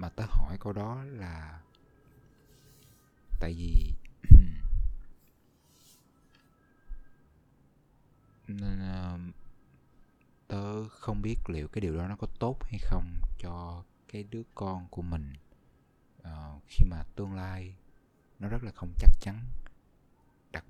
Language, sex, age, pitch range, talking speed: Vietnamese, male, 20-39, 80-105 Hz, 110 wpm